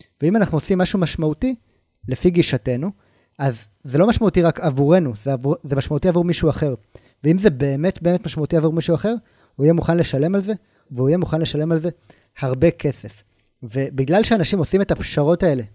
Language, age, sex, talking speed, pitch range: Hebrew, 30-49, male, 185 wpm, 135-185 Hz